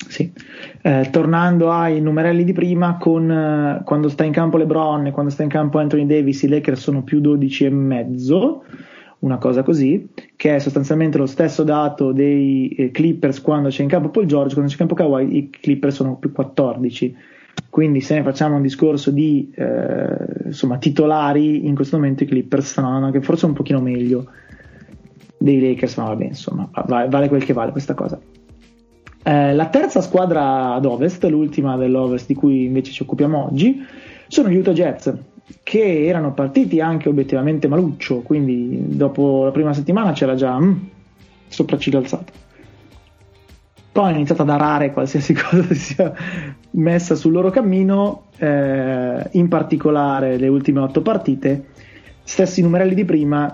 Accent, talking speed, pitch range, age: native, 165 wpm, 135-165 Hz, 20-39